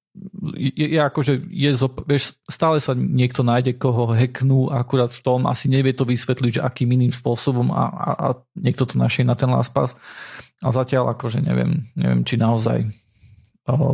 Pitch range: 115-130 Hz